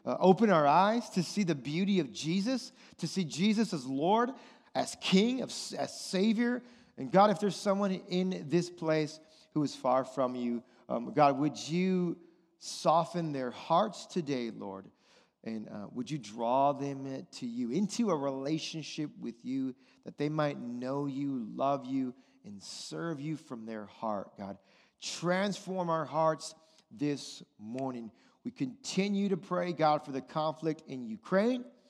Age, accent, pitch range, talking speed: 40-59, American, 140-185 Hz, 155 wpm